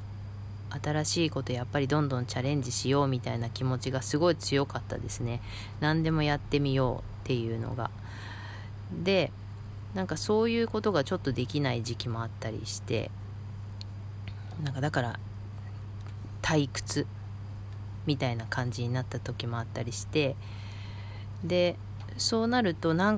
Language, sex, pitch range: Japanese, female, 100-150 Hz